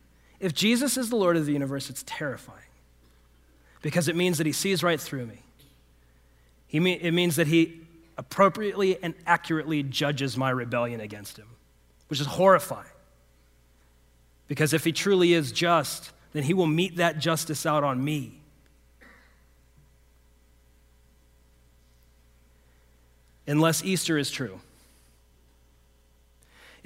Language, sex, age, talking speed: English, male, 30-49, 120 wpm